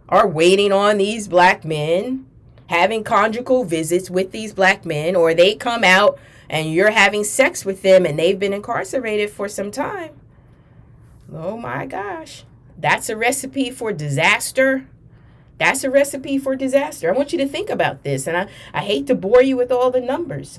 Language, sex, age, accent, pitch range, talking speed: English, female, 30-49, American, 140-200 Hz, 180 wpm